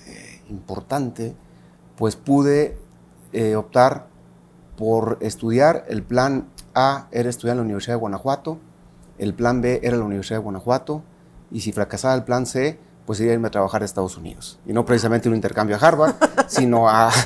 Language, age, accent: Spanish, 40-59, Mexican